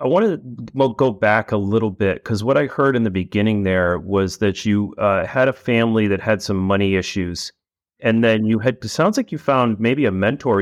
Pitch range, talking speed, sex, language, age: 100-125 Hz, 225 wpm, male, English, 30-49